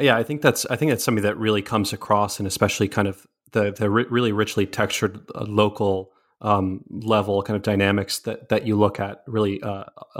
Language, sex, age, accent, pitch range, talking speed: English, male, 30-49, American, 105-115 Hz, 210 wpm